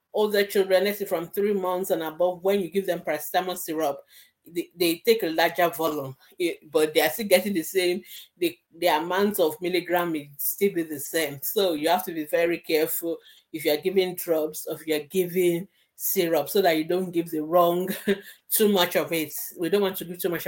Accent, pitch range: Nigerian, 155-185 Hz